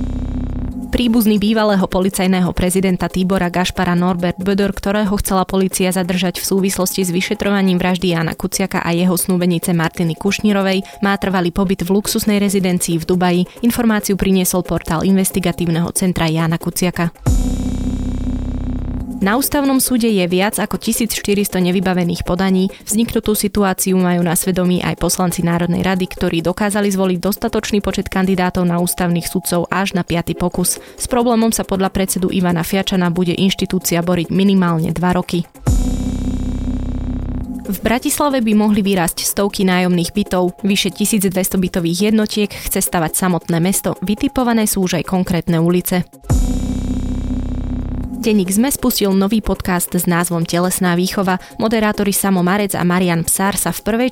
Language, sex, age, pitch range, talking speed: Slovak, female, 20-39, 175-200 Hz, 135 wpm